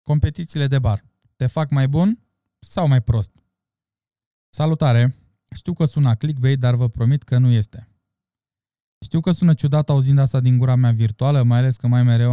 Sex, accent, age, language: male, native, 20-39, Romanian